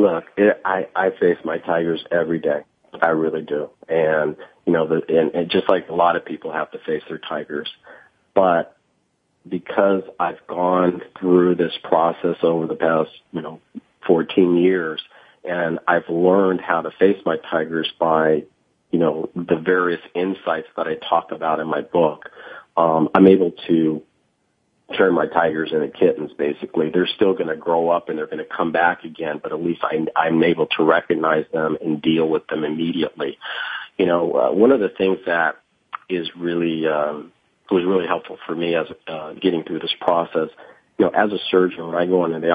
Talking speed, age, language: 190 wpm, 40-59, English